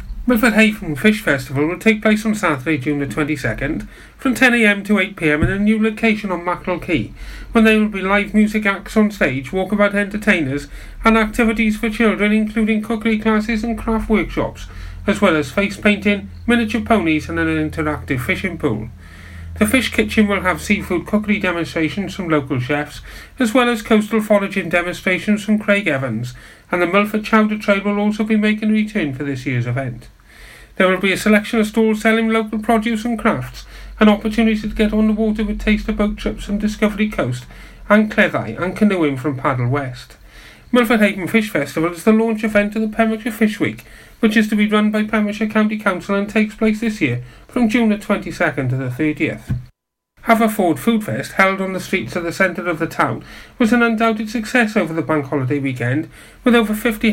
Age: 40-59